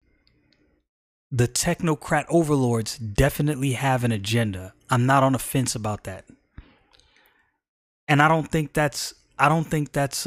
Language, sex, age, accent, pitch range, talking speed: English, male, 30-49, American, 115-155 Hz, 135 wpm